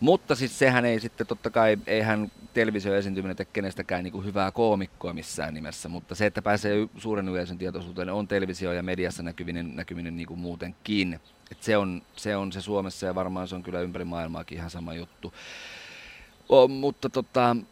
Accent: native